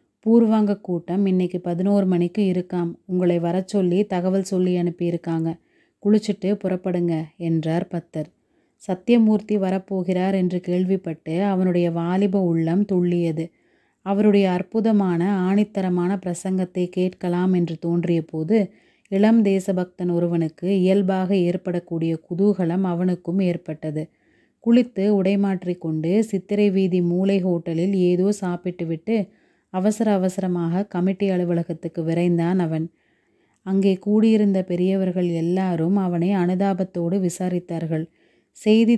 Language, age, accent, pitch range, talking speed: Tamil, 30-49, native, 175-195 Hz, 95 wpm